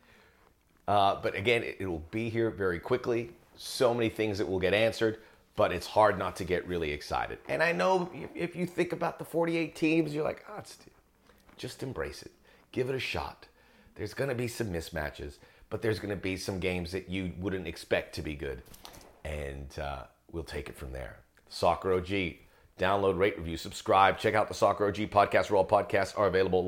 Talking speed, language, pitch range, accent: 200 wpm, English, 100-155 Hz, American